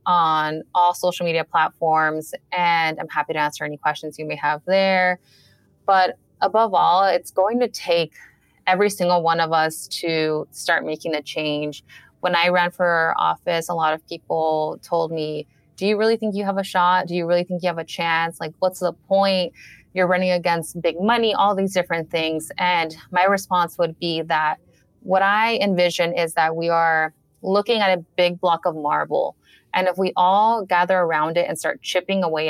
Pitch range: 160-180 Hz